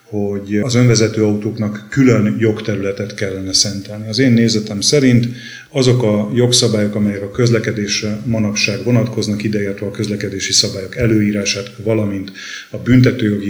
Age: 30-49